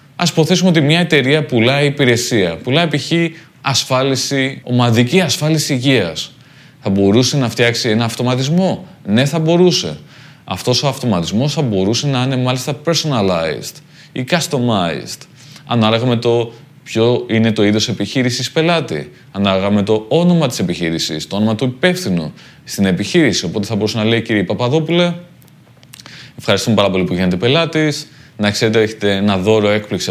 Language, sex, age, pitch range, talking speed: Greek, male, 20-39, 110-150 Hz, 140 wpm